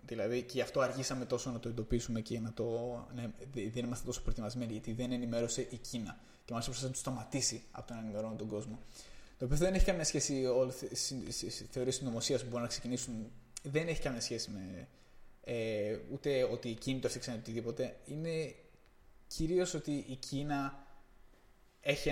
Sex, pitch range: male, 120-140 Hz